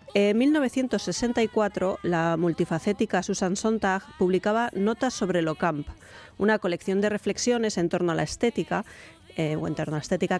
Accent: Spanish